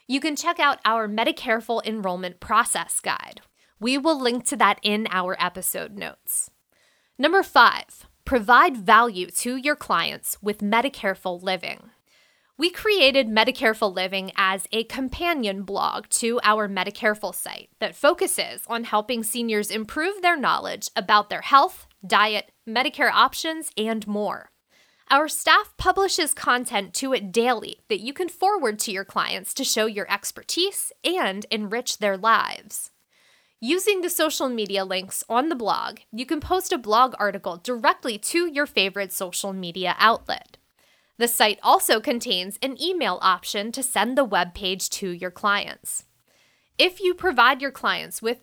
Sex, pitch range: female, 205-290 Hz